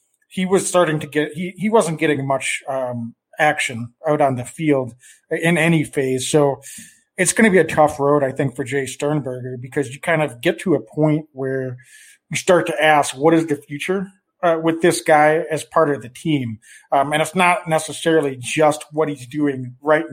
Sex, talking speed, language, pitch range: male, 205 wpm, English, 135-160 Hz